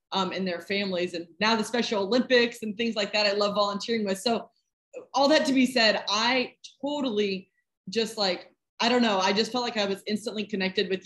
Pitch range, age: 180-215 Hz, 20-39